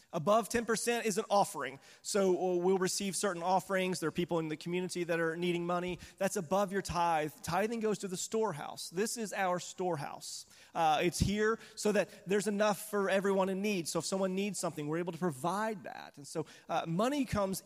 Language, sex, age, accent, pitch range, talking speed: English, male, 30-49, American, 165-205 Hz, 200 wpm